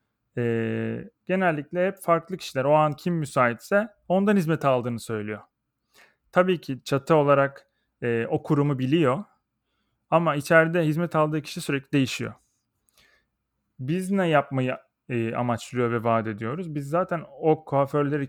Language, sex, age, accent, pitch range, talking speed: Turkish, male, 30-49, native, 120-160 Hz, 120 wpm